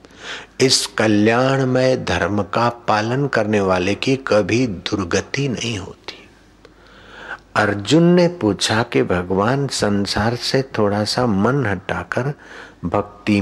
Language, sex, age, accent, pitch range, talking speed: Hindi, male, 60-79, native, 100-125 Hz, 110 wpm